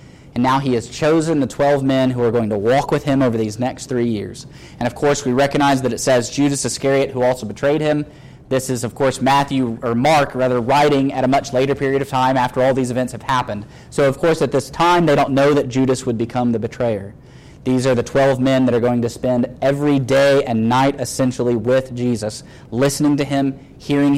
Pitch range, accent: 120-140 Hz, American